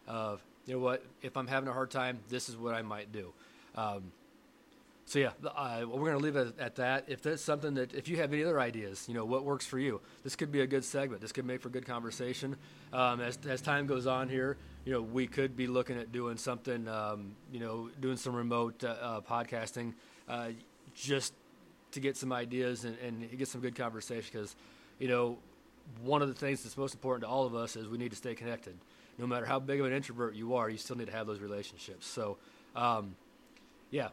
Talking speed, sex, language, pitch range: 230 wpm, male, English, 120-135 Hz